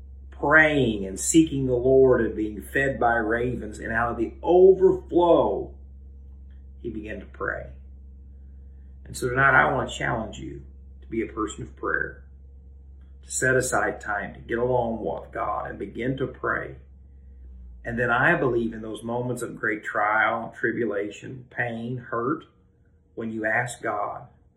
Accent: American